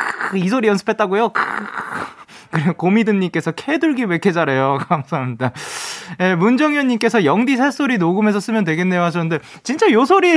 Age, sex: 20-39, male